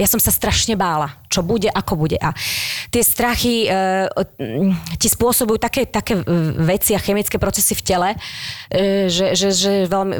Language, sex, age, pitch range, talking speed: Slovak, female, 30-49, 170-210 Hz, 165 wpm